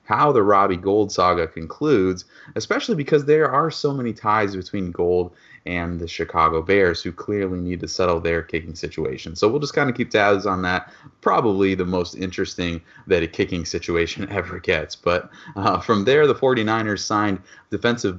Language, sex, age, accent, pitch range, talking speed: English, male, 30-49, American, 90-125 Hz, 180 wpm